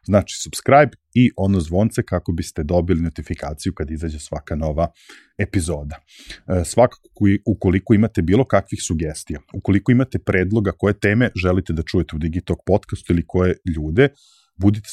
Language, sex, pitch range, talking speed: English, male, 85-105 Hz, 140 wpm